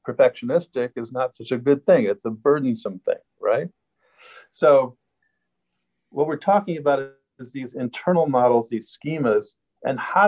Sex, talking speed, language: male, 145 wpm, English